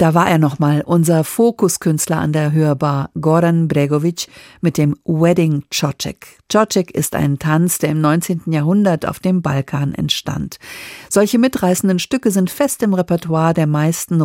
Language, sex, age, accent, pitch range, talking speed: German, female, 50-69, German, 155-195 Hz, 150 wpm